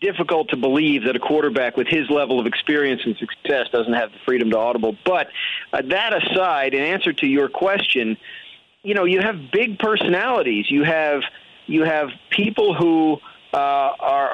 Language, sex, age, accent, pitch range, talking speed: English, male, 40-59, American, 135-185 Hz, 175 wpm